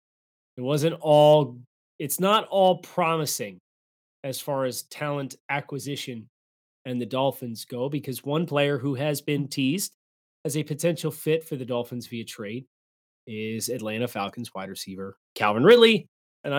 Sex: male